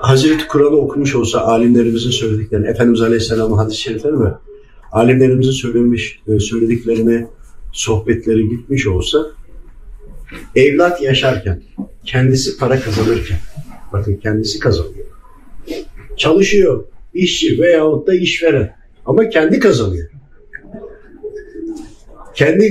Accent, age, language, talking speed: native, 50-69, Turkish, 90 wpm